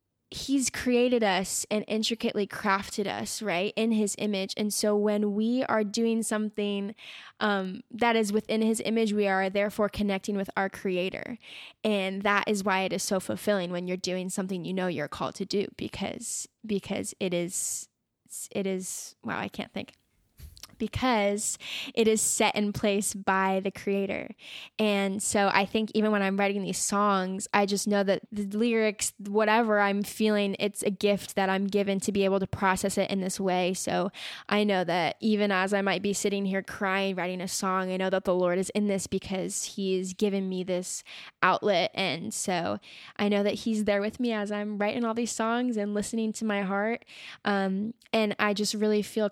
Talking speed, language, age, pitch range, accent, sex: 190 wpm, English, 10-29, 195-215 Hz, American, female